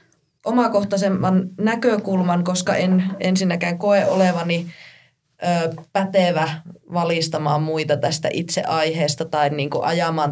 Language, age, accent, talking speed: Finnish, 20-39, native, 80 wpm